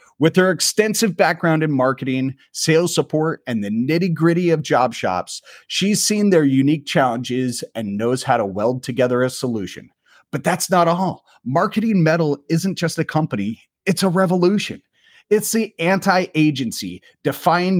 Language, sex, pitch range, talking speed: English, male, 125-170 Hz, 150 wpm